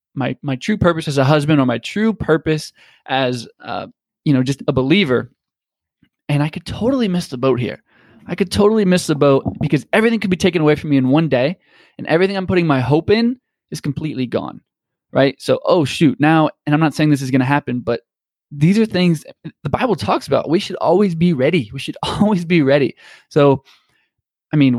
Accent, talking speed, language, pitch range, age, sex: American, 215 wpm, English, 135-195 Hz, 20-39, male